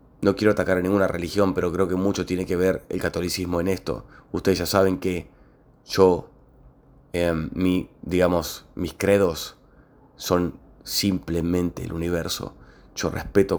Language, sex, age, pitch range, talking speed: Spanish, male, 30-49, 85-100 Hz, 150 wpm